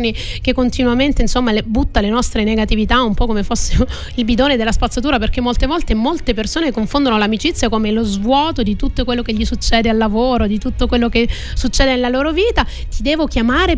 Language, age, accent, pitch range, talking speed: Italian, 30-49, native, 210-255 Hz, 190 wpm